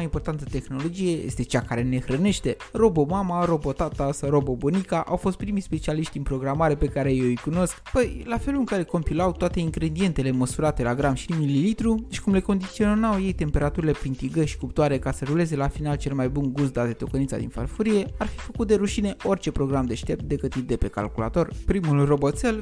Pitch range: 140-190 Hz